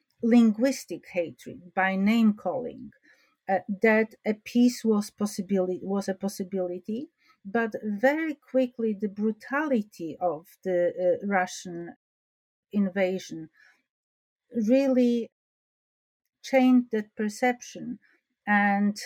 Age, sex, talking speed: 50-69, female, 90 wpm